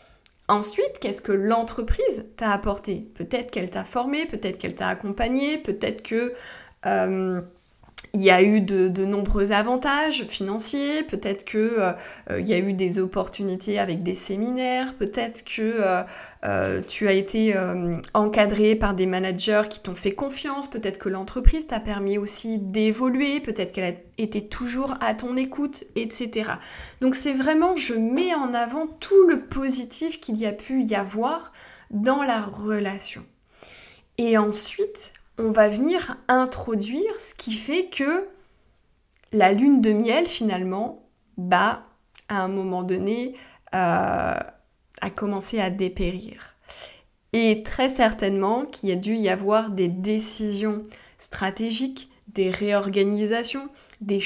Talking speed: 140 wpm